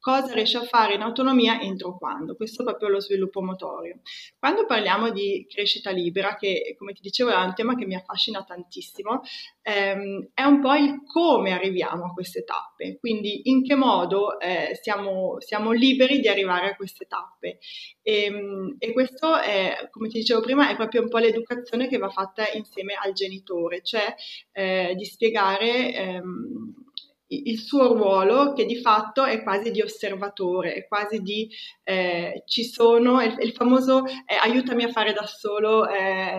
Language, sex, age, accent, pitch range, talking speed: Italian, female, 20-39, native, 195-245 Hz, 175 wpm